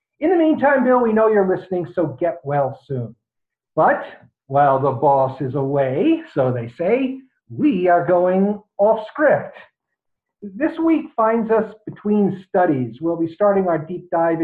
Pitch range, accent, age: 155-240 Hz, American, 50-69